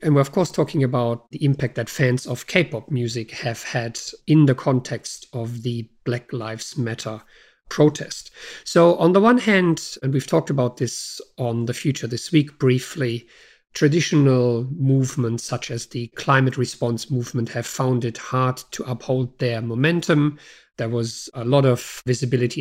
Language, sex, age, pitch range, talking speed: English, male, 50-69, 115-135 Hz, 165 wpm